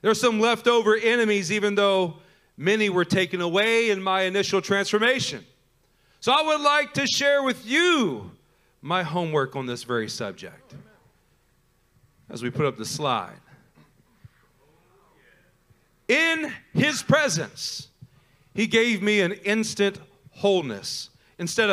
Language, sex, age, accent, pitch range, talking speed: English, male, 40-59, American, 160-215 Hz, 125 wpm